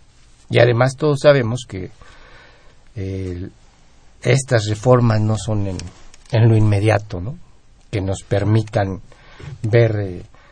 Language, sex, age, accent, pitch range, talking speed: Spanish, male, 60-79, Mexican, 105-125 Hz, 115 wpm